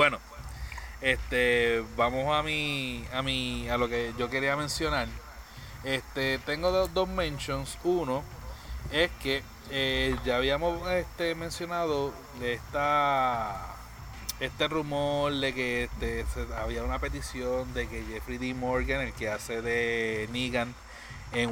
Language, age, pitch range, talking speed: Spanish, 30-49, 120-145 Hz, 130 wpm